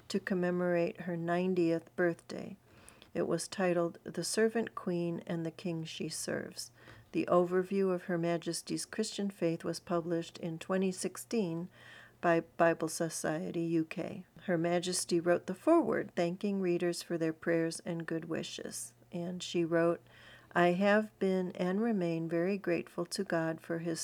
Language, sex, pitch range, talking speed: English, female, 165-185 Hz, 145 wpm